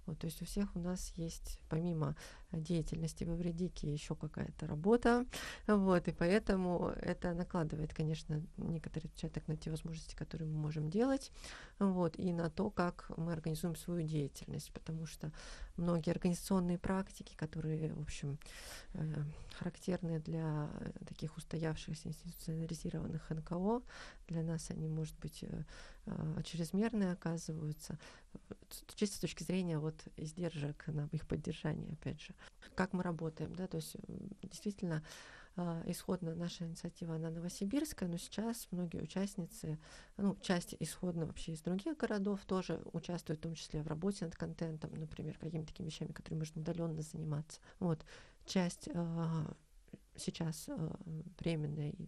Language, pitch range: Russian, 160-185 Hz